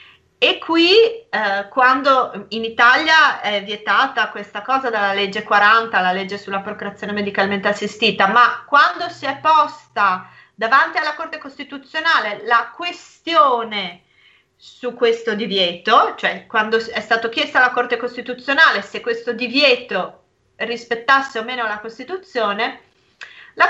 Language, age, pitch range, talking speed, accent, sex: Italian, 30-49, 205-270 Hz, 125 wpm, native, female